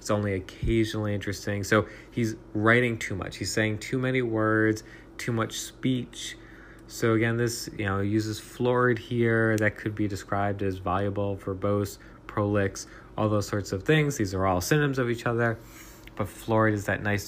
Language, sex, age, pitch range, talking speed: English, male, 20-39, 100-120 Hz, 175 wpm